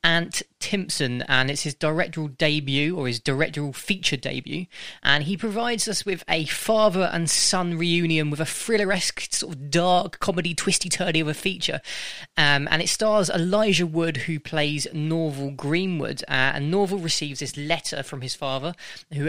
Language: English